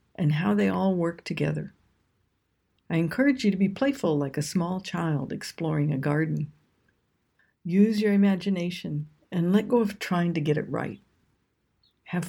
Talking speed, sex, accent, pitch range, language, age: 155 wpm, female, American, 145-200 Hz, English, 60-79